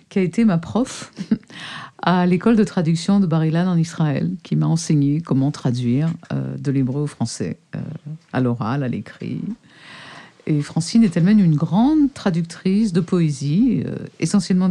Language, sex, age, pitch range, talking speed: French, female, 50-69, 150-190 Hz, 145 wpm